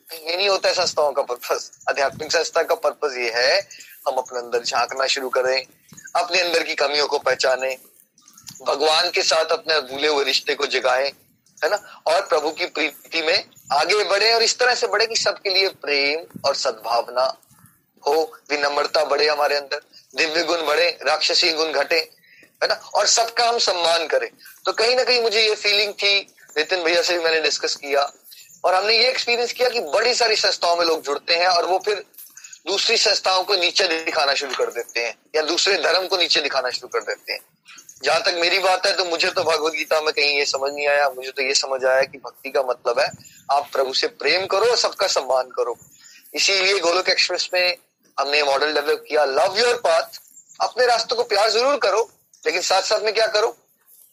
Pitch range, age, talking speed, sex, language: 145-215 Hz, 20-39, 195 wpm, male, Hindi